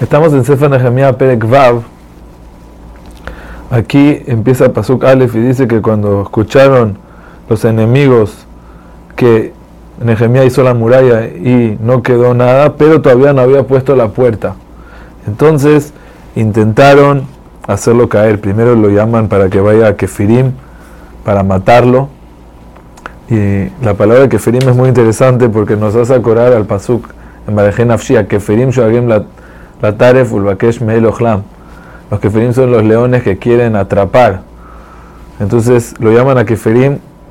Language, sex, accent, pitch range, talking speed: Spanish, male, Argentinian, 100-125 Hz, 125 wpm